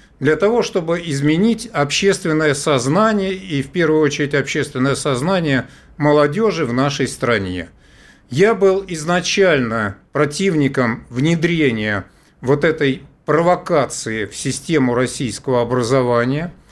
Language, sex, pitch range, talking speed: Russian, male, 135-190 Hz, 100 wpm